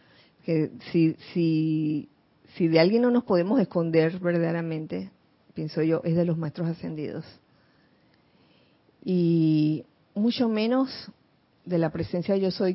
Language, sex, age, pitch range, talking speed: Spanish, female, 40-59, 170-235 Hz, 120 wpm